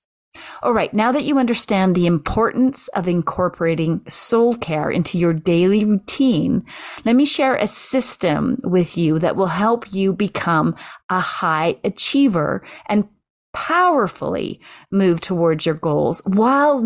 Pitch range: 170-235 Hz